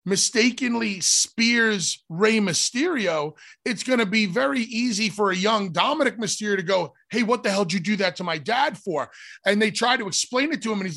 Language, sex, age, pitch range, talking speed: English, male, 30-49, 160-215 Hz, 215 wpm